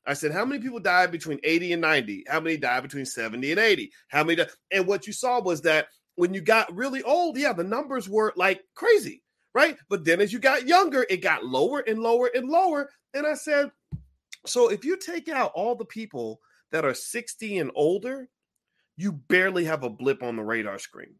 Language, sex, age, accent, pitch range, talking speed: English, male, 40-59, American, 140-230 Hz, 215 wpm